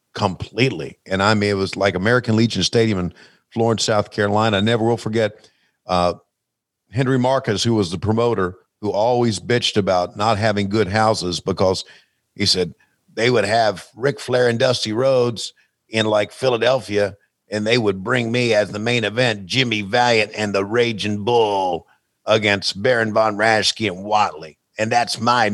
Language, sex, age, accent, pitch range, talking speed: English, male, 50-69, American, 105-125 Hz, 165 wpm